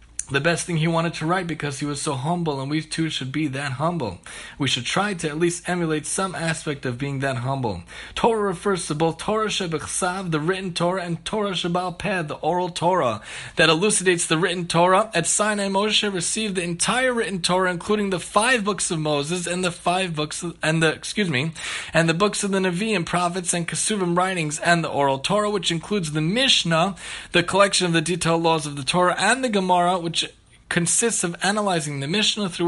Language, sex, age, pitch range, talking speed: English, male, 20-39, 155-195 Hz, 210 wpm